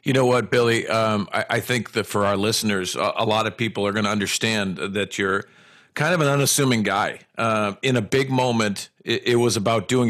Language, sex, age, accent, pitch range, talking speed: English, male, 50-69, American, 110-130 Hz, 225 wpm